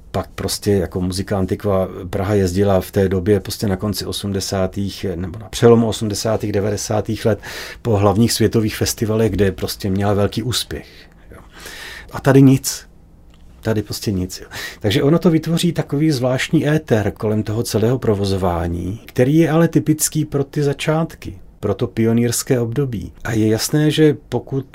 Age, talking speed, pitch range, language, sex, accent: 40-59, 150 wpm, 100-130 Hz, Czech, male, native